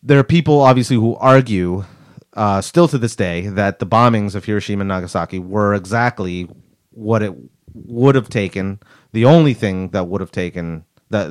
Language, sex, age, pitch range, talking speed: English, male, 30-49, 95-120 Hz, 160 wpm